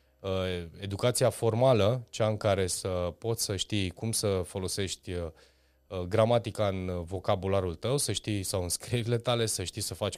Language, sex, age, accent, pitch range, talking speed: Romanian, male, 20-39, native, 95-115 Hz, 155 wpm